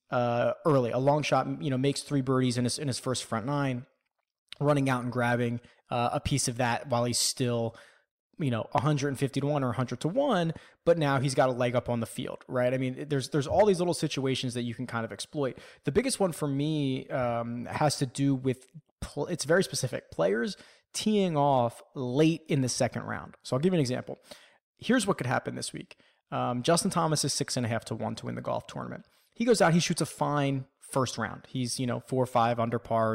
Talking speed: 230 wpm